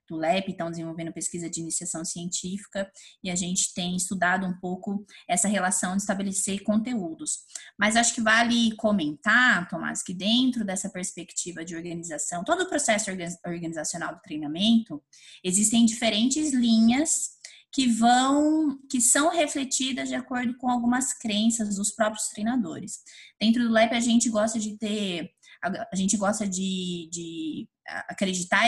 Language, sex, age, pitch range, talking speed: Portuguese, female, 20-39, 190-245 Hz, 140 wpm